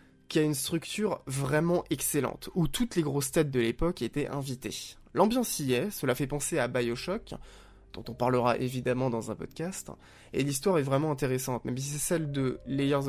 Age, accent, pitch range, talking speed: 20-39, French, 125-155 Hz, 185 wpm